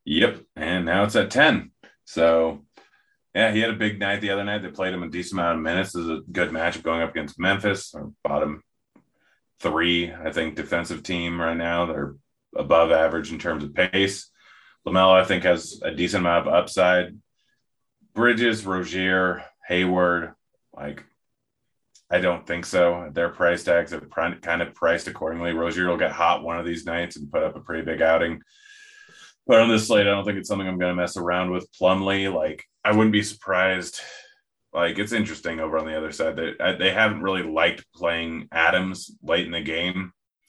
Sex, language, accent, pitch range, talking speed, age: male, English, American, 85-95 Hz, 190 wpm, 30-49